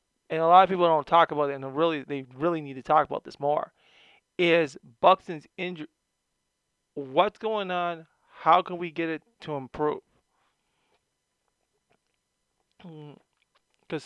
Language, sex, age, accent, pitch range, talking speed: English, male, 20-39, American, 145-180 Hz, 140 wpm